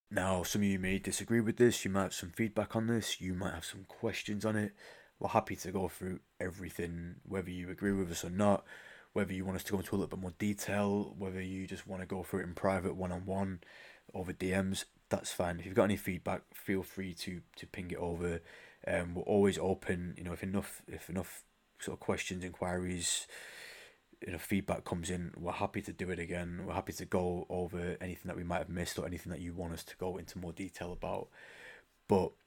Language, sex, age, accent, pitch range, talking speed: English, male, 20-39, British, 85-95 Hz, 225 wpm